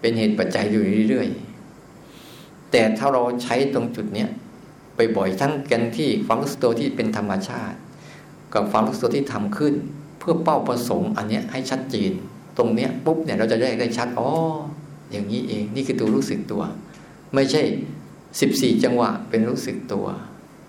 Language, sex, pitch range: Thai, male, 115-155 Hz